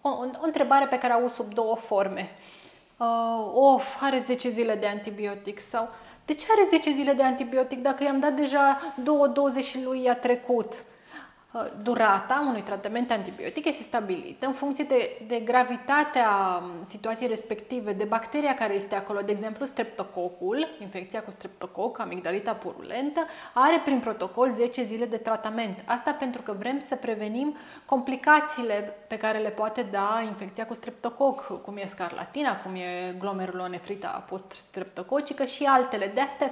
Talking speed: 160 wpm